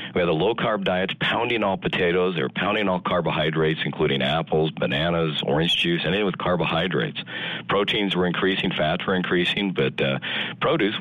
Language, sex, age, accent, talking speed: English, male, 50-69, American, 165 wpm